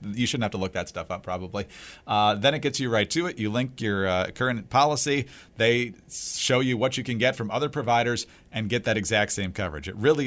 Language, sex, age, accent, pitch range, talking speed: English, male, 40-59, American, 100-135 Hz, 240 wpm